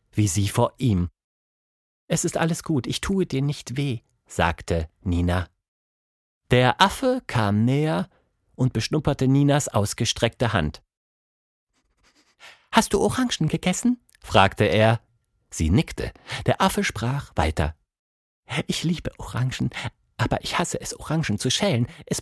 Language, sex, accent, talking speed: English, male, German, 125 wpm